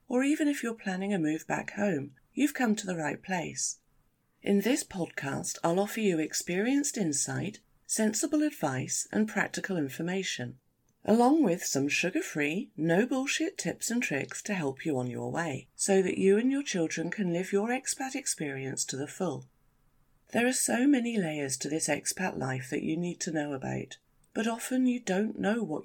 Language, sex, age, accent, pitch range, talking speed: English, female, 40-59, British, 140-215 Hz, 180 wpm